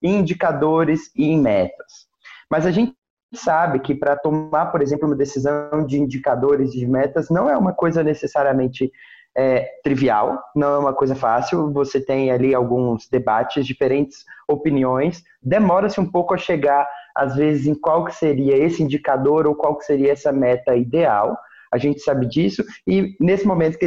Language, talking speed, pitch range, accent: Portuguese, 165 wpm, 145-185 Hz, Brazilian